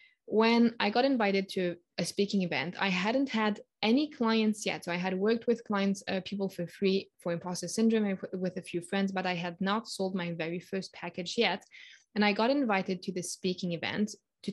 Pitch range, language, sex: 185-225 Hz, English, female